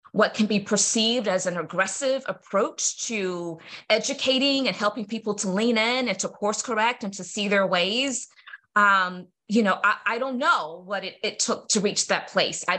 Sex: female